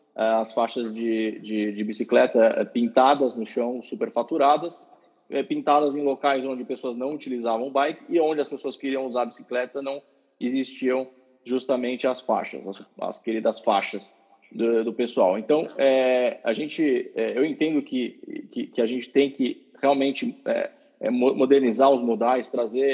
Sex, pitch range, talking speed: male, 120-145 Hz, 155 wpm